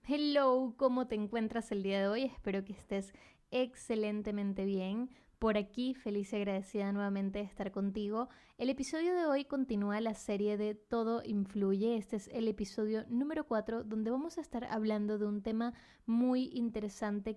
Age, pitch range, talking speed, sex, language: 20-39, 205-240 Hz, 165 wpm, female, Spanish